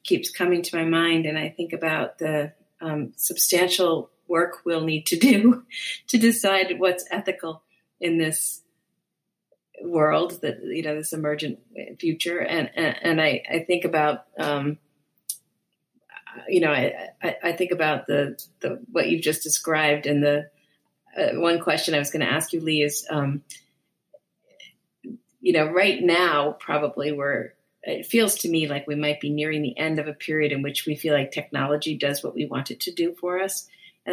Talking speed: 180 wpm